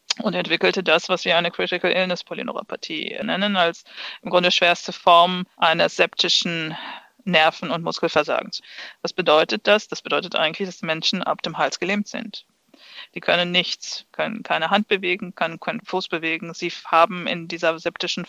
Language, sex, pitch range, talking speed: German, female, 165-200 Hz, 165 wpm